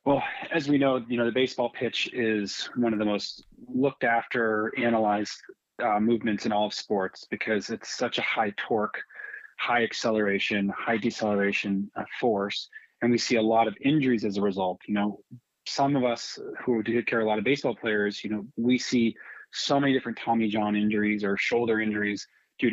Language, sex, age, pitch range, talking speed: English, male, 30-49, 105-130 Hz, 185 wpm